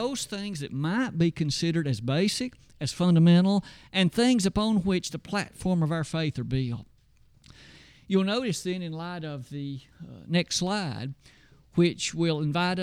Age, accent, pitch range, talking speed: 50-69, American, 140-190 Hz, 160 wpm